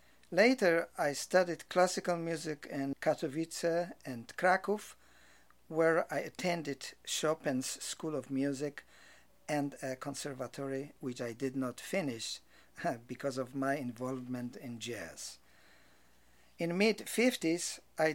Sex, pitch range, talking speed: male, 130-160 Hz, 110 wpm